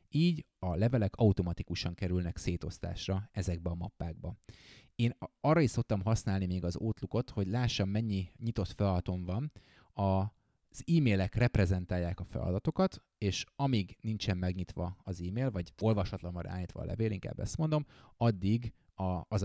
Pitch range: 90-115 Hz